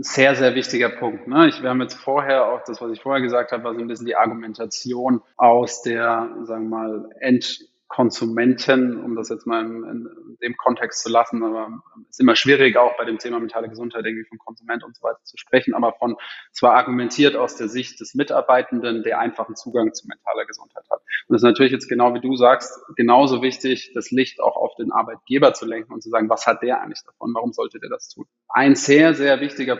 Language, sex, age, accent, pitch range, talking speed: German, male, 20-39, German, 115-135 Hz, 220 wpm